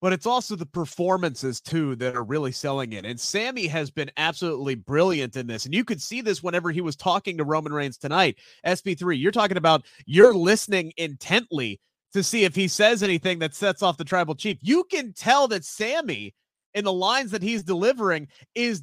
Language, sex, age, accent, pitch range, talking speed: English, male, 30-49, American, 175-255 Hz, 200 wpm